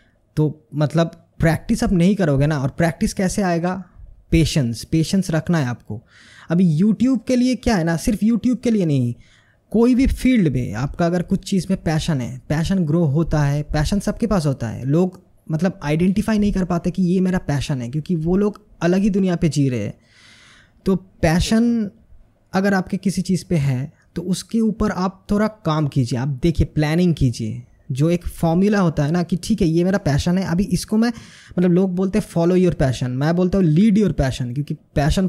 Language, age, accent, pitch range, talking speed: Hindi, 20-39, native, 145-190 Hz, 200 wpm